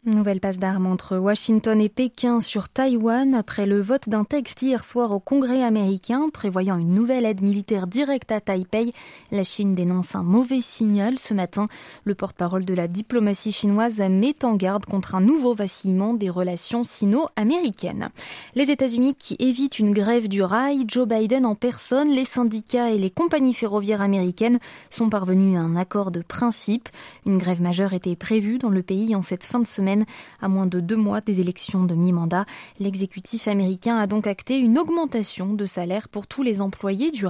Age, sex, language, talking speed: 20-39, female, French, 185 wpm